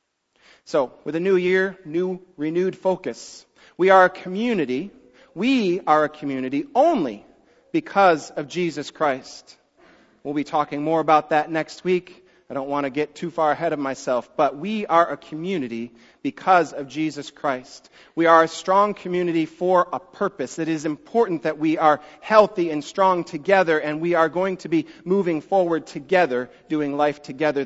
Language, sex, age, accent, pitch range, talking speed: English, male, 40-59, American, 150-185 Hz, 170 wpm